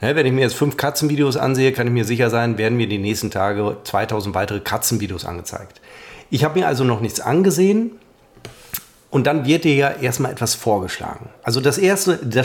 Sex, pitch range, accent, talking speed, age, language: male, 115-145 Hz, German, 195 wpm, 40-59, German